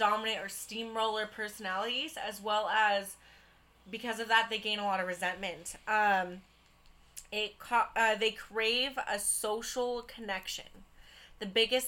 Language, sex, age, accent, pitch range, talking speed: English, female, 20-39, American, 200-230 Hz, 135 wpm